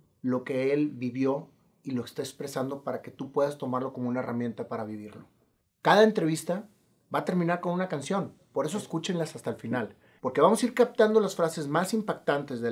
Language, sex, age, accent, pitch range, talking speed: Spanish, male, 40-59, Mexican, 125-165 Hz, 200 wpm